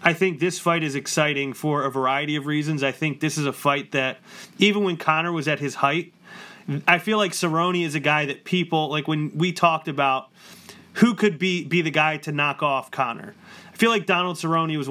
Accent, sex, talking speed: American, male, 215 wpm